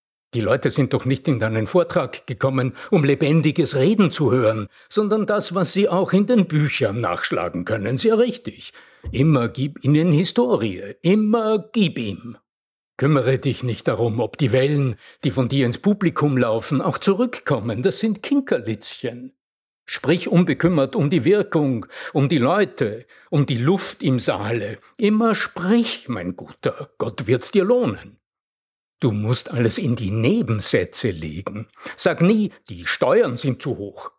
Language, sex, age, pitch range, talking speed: German, male, 60-79, 125-195 Hz, 150 wpm